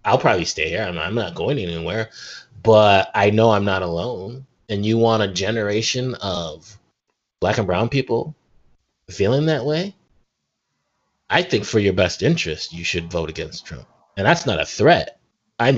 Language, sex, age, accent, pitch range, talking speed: English, male, 30-49, American, 90-130 Hz, 165 wpm